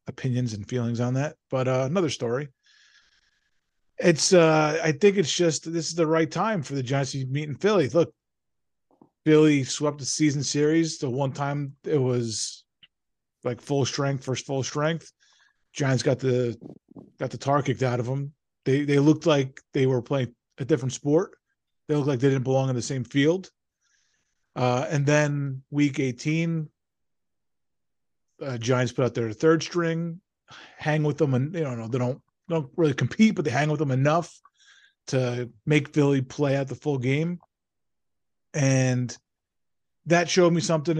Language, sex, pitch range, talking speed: English, male, 125-155 Hz, 170 wpm